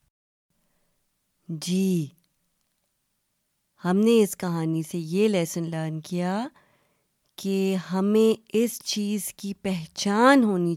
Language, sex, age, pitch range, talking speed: Urdu, female, 30-49, 180-245 Hz, 95 wpm